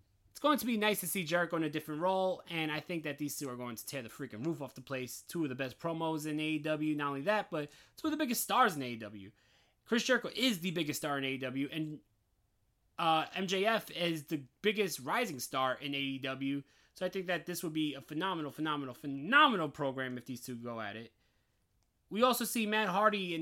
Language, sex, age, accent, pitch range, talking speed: English, male, 20-39, American, 135-175 Hz, 225 wpm